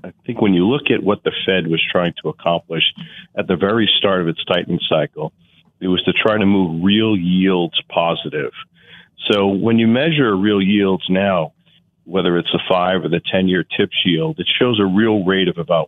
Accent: American